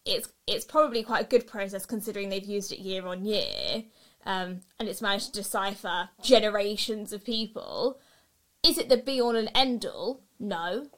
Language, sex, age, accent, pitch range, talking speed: English, female, 20-39, British, 200-240 Hz, 175 wpm